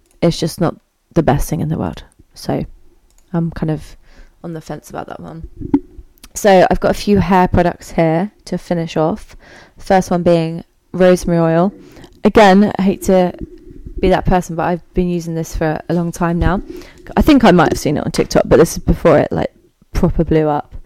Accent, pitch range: British, 165-195 Hz